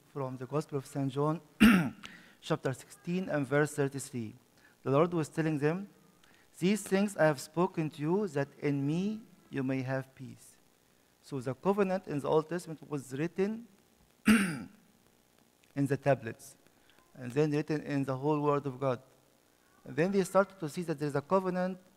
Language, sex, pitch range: English, male, 135-165 Hz